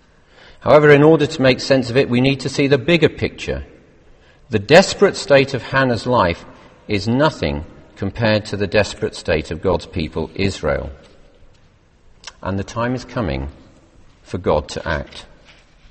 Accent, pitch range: British, 95-140 Hz